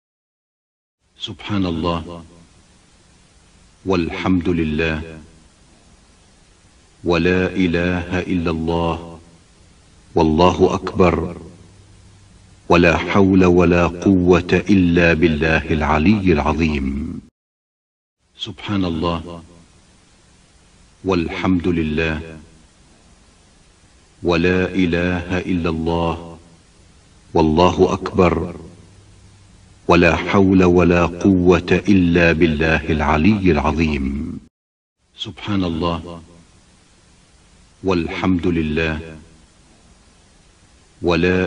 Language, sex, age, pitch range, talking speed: Arabic, male, 50-69, 80-90 Hz, 60 wpm